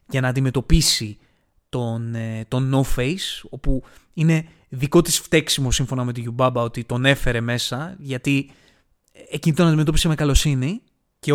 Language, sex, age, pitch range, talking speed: Greek, male, 20-39, 120-150 Hz, 135 wpm